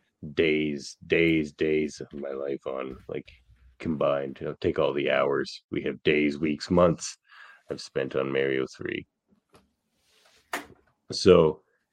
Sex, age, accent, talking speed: male, 30-49, American, 125 wpm